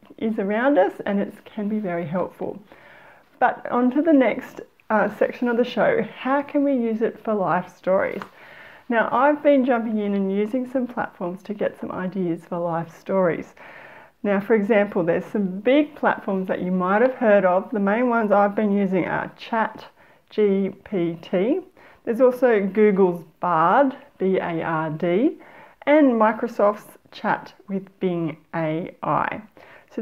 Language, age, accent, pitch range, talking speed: English, 40-59, Australian, 190-250 Hz, 155 wpm